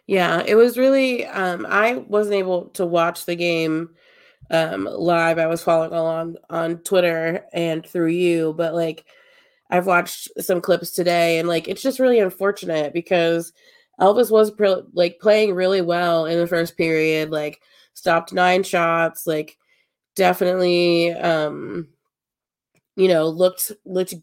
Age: 20-39